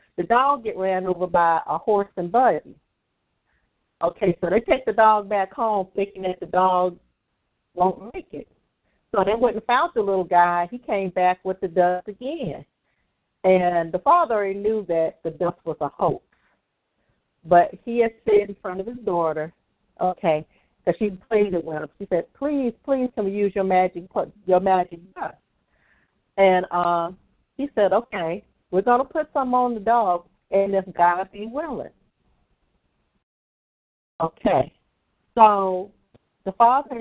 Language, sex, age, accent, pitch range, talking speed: English, female, 50-69, American, 180-230 Hz, 160 wpm